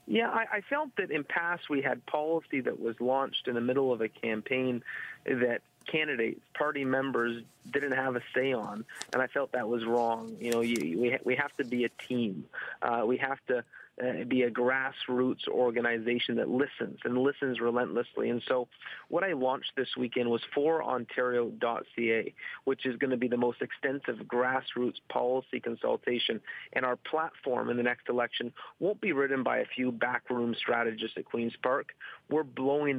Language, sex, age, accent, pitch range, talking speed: English, male, 30-49, American, 120-135 Hz, 185 wpm